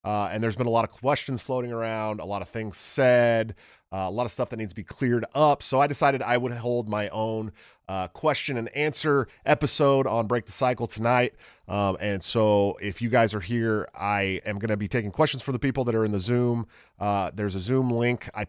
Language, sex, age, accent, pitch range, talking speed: English, male, 30-49, American, 105-125 Hz, 235 wpm